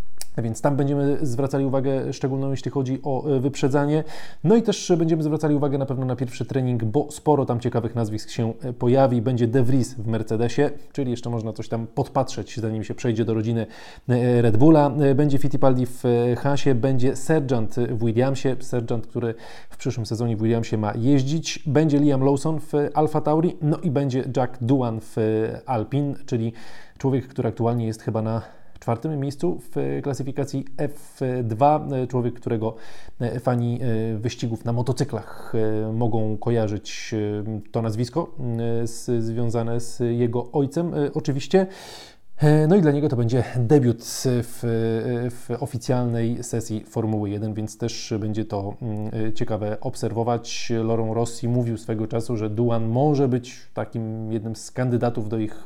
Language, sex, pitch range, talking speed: Polish, male, 115-140 Hz, 150 wpm